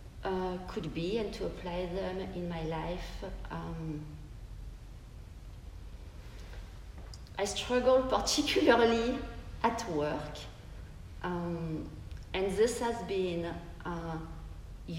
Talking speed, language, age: 90 wpm, English, 40-59